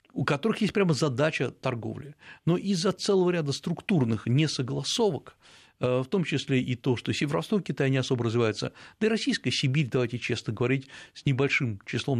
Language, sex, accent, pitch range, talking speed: Russian, male, native, 120-160 Hz, 160 wpm